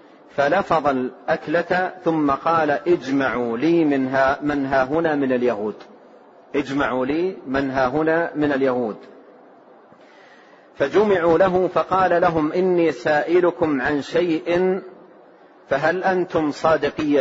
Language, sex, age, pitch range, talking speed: Arabic, male, 40-59, 145-175 Hz, 100 wpm